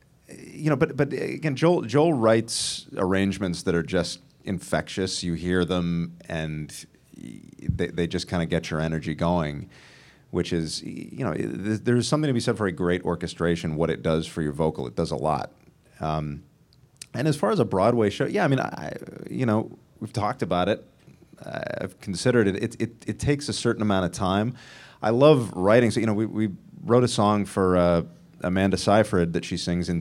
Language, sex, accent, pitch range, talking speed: English, male, American, 85-115 Hz, 200 wpm